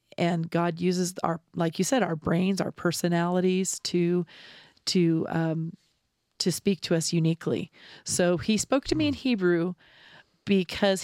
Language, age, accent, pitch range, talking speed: English, 40-59, American, 165-185 Hz, 145 wpm